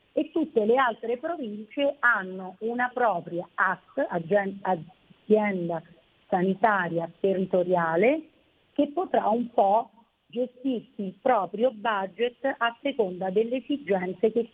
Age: 40-59